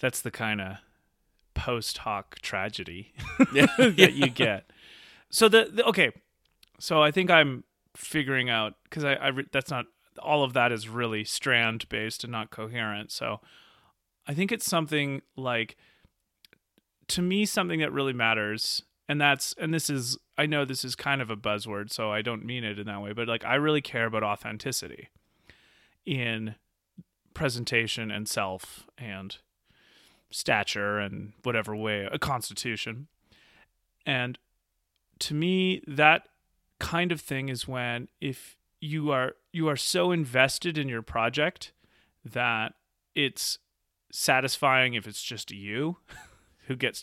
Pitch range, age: 110-145 Hz, 30-49